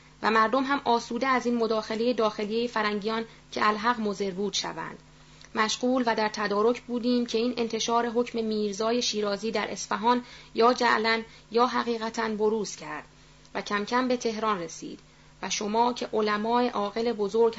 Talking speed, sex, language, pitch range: 150 wpm, female, Persian, 215-240 Hz